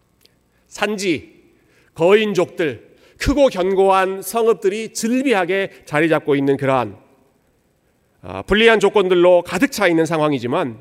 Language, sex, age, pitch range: Korean, male, 40-59, 145-205 Hz